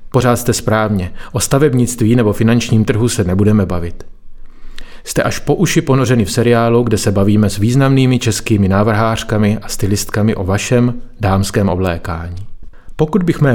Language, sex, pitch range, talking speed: Czech, male, 100-125 Hz, 150 wpm